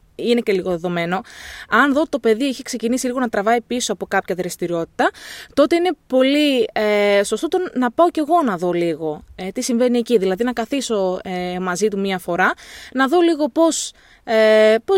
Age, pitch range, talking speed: 20-39, 205-310 Hz, 180 wpm